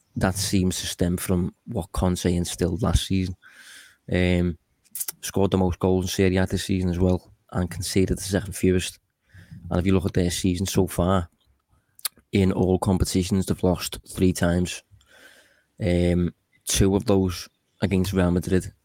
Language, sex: English, male